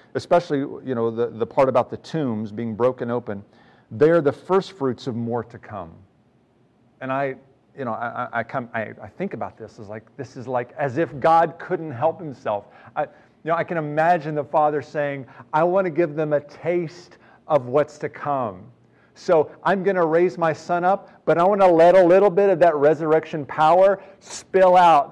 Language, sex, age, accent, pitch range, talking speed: English, male, 40-59, American, 135-175 Hz, 205 wpm